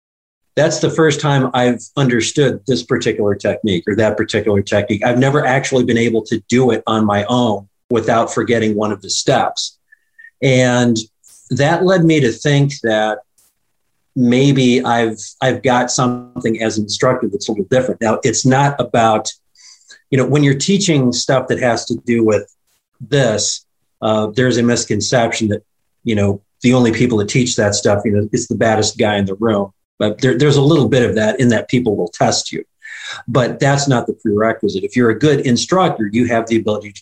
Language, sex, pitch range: English, male, 110-130 Hz